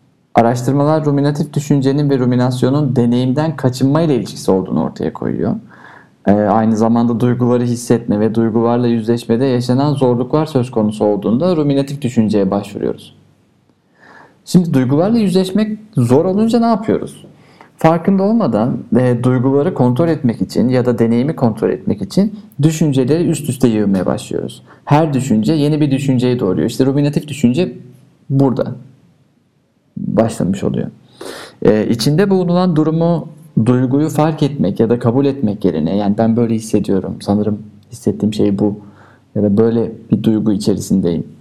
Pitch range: 115-155 Hz